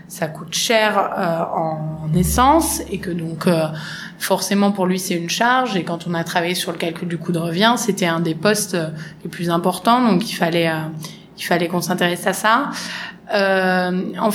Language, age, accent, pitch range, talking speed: French, 20-39, French, 175-215 Hz, 205 wpm